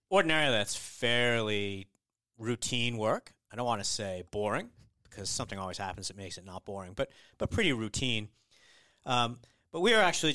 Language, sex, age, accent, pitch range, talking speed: English, male, 40-59, American, 100-130 Hz, 170 wpm